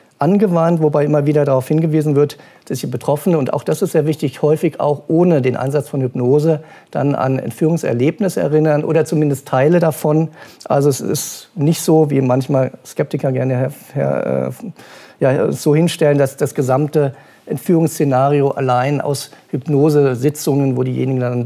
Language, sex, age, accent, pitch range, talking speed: German, male, 50-69, German, 130-155 Hz, 155 wpm